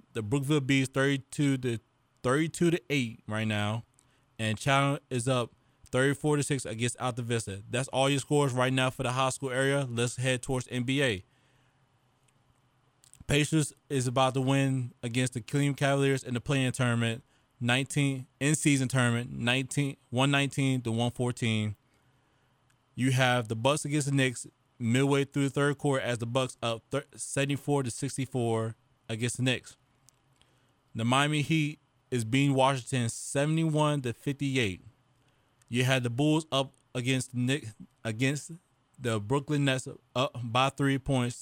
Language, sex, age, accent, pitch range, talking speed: English, male, 20-39, American, 120-140 Hz, 150 wpm